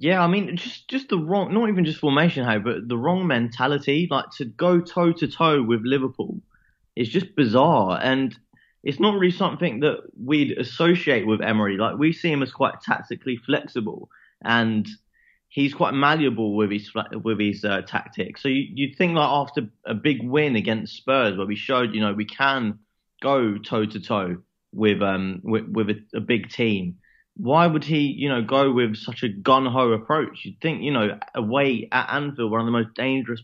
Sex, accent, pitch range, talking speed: male, British, 110-140 Hz, 185 wpm